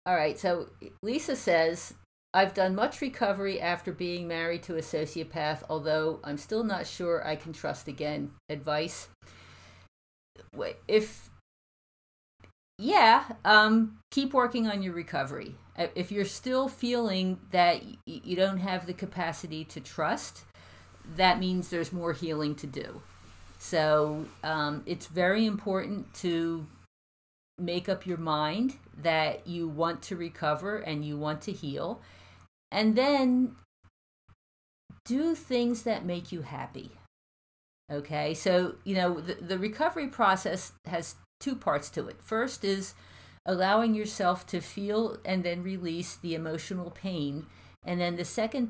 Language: English